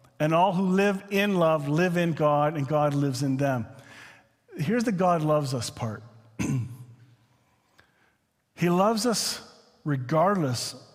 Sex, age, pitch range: male, 40-59, 130-185 Hz